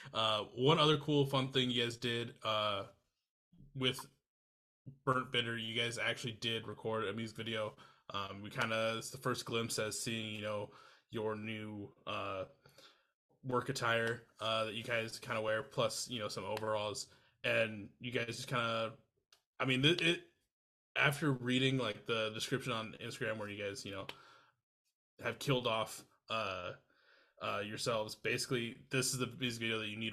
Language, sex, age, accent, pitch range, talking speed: English, male, 20-39, American, 110-130 Hz, 170 wpm